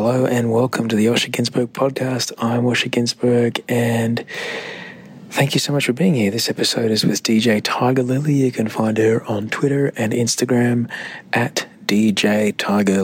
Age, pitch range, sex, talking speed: 30-49, 105-150 Hz, male, 170 wpm